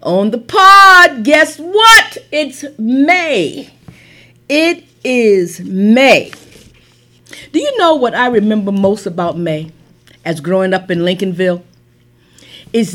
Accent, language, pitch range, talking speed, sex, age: American, English, 185-305 Hz, 115 wpm, female, 50-69